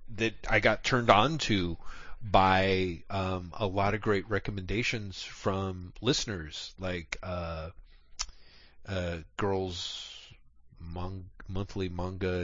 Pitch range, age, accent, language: 90-115 Hz, 30-49, American, English